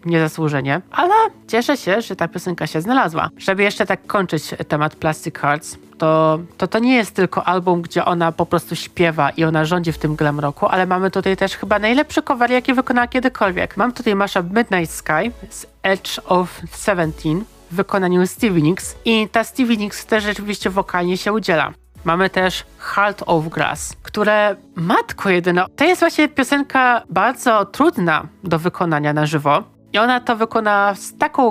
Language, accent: Polish, native